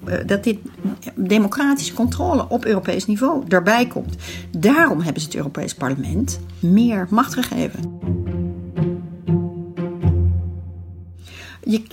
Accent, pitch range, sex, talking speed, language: Dutch, 160-235 Hz, female, 95 wpm, Dutch